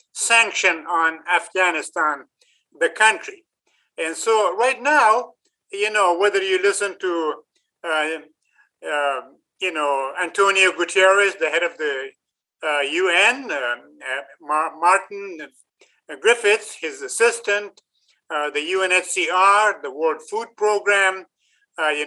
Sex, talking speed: male, 110 wpm